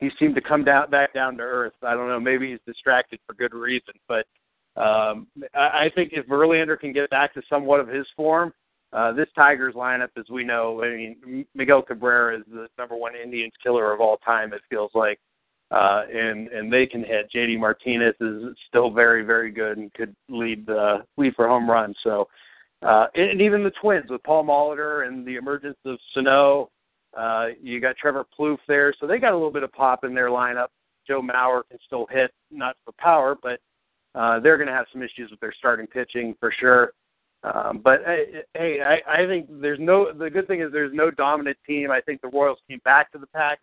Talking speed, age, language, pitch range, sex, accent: 215 wpm, 50-69, English, 120-145 Hz, male, American